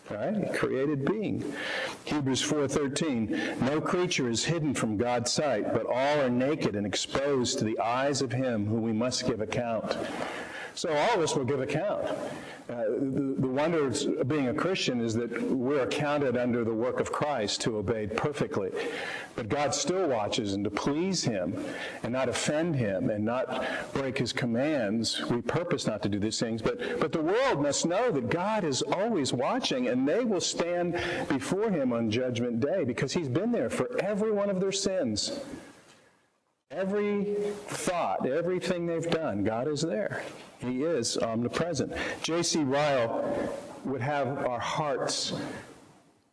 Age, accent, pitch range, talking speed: 50-69, American, 120-155 Hz, 165 wpm